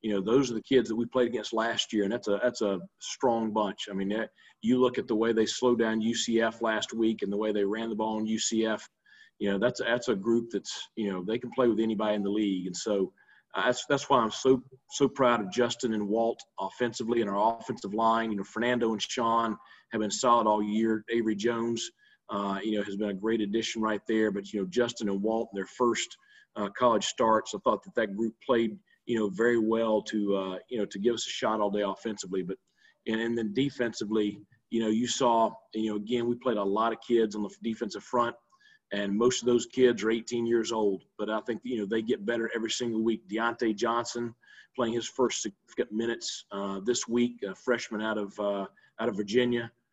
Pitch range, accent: 105-120 Hz, American